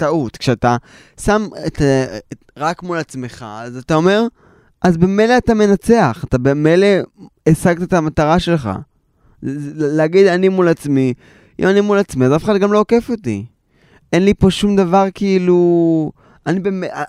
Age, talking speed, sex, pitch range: 20-39, 160 wpm, male, 125-175 Hz